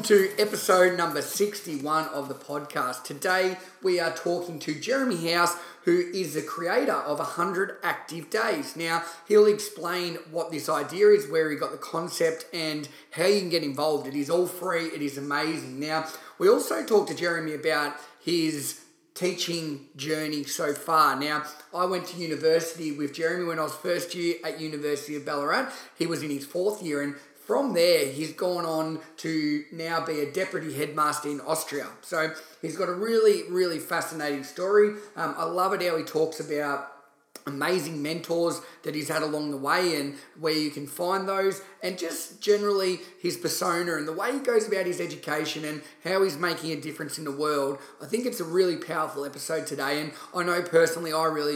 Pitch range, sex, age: 150-180 Hz, male, 30-49